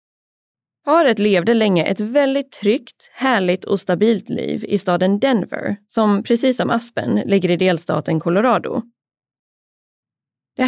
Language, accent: Swedish, native